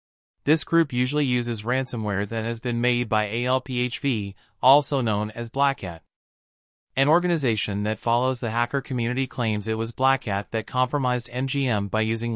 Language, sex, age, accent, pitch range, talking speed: English, male, 30-49, American, 110-130 Hz, 160 wpm